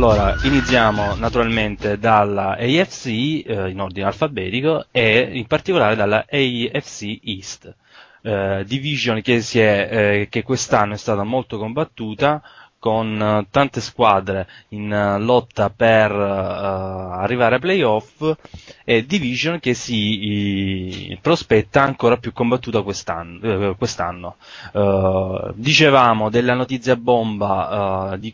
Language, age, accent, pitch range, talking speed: Italian, 20-39, native, 100-125 Hz, 115 wpm